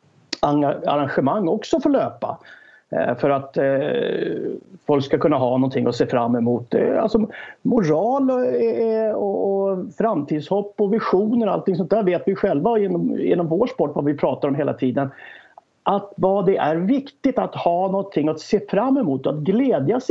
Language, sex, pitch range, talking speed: English, male, 140-220 Hz, 165 wpm